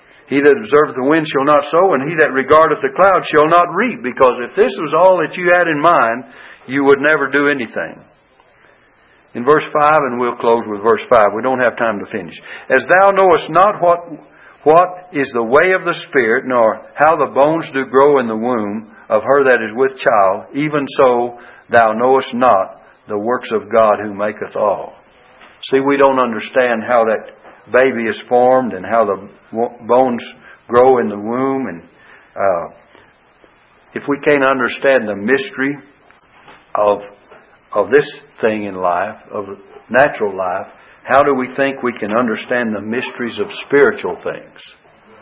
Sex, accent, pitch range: male, American, 120-150 Hz